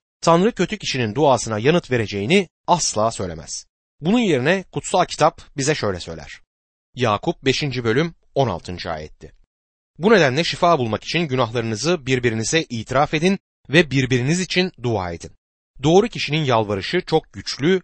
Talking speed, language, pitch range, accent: 130 wpm, Turkish, 105-165 Hz, native